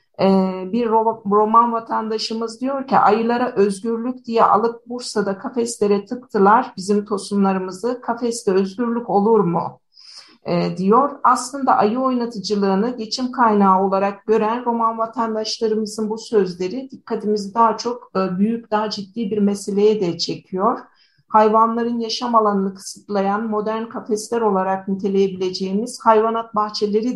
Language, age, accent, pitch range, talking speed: Turkish, 50-69, native, 200-230 Hz, 110 wpm